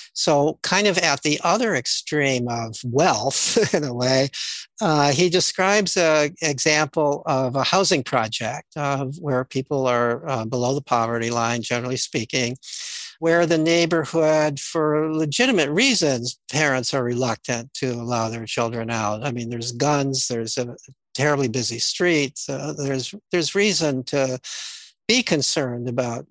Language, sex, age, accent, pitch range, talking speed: English, male, 60-79, American, 130-165 Hz, 140 wpm